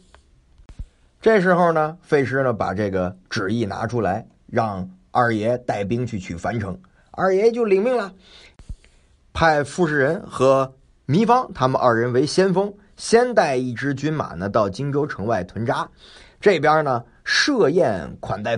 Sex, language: male, Chinese